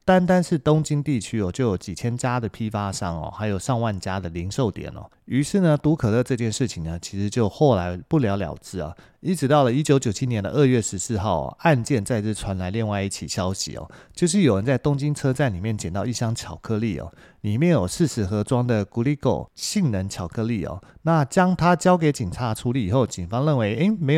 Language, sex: Chinese, male